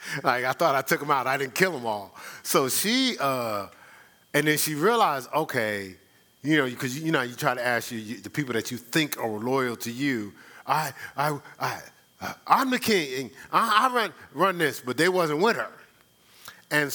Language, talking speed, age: English, 200 wpm, 40-59